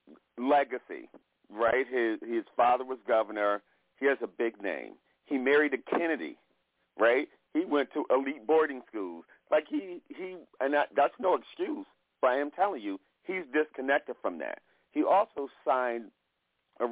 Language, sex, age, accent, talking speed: English, male, 50-69, American, 155 wpm